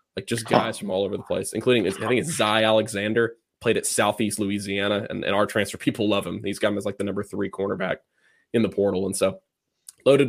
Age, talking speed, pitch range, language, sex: 20-39, 235 wpm, 100-125 Hz, English, male